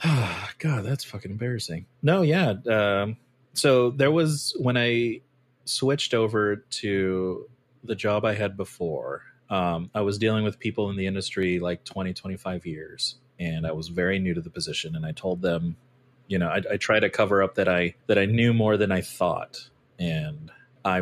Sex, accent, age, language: male, American, 30-49, English